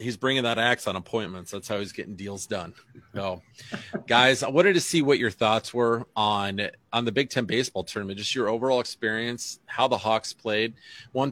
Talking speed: 200 wpm